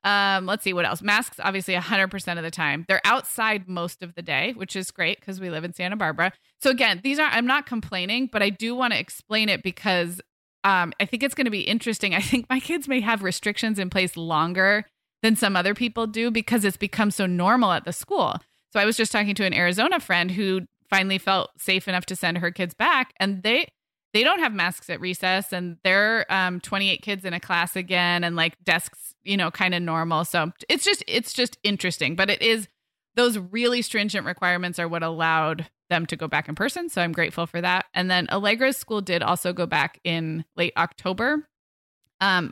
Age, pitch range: 20-39, 175-215 Hz